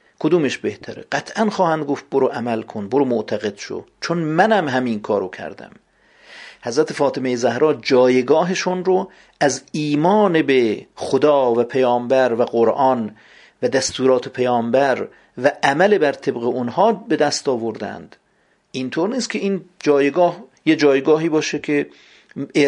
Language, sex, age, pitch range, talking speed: Persian, male, 50-69, 130-180 Hz, 130 wpm